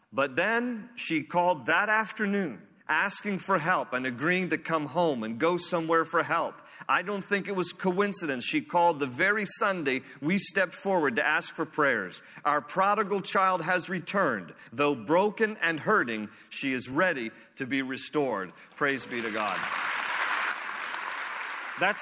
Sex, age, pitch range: male, 40-59, 135-185 Hz